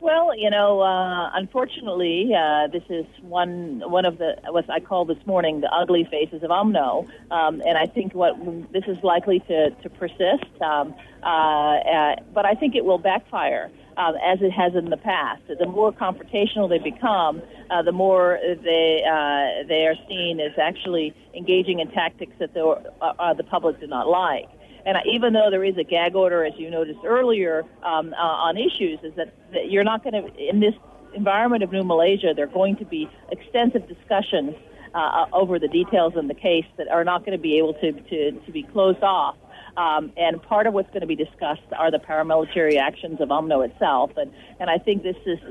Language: English